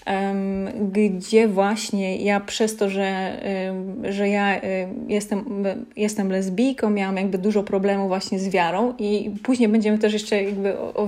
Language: Polish